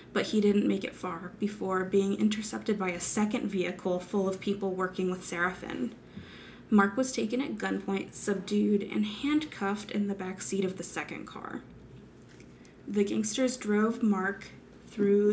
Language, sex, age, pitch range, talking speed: English, female, 20-39, 195-220 Hz, 155 wpm